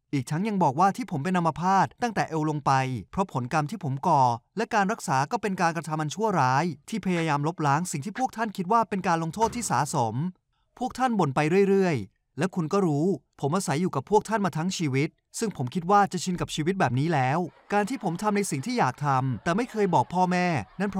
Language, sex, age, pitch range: Thai, male, 20-39, 140-200 Hz